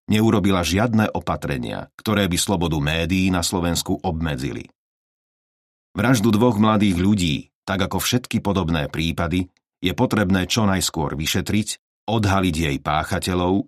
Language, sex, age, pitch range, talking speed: Slovak, male, 40-59, 85-105 Hz, 120 wpm